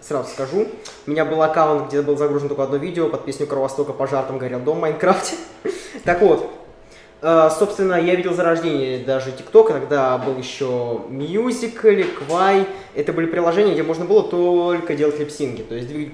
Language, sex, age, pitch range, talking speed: Russian, male, 20-39, 135-175 Hz, 175 wpm